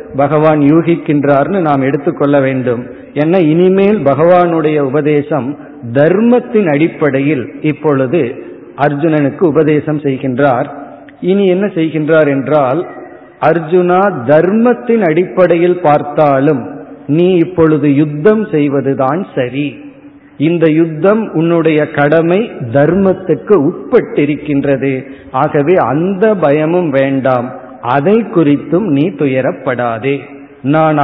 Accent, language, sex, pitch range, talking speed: native, Tamil, male, 140-180 Hz, 85 wpm